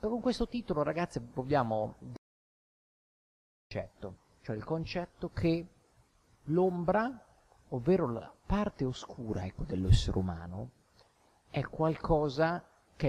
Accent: native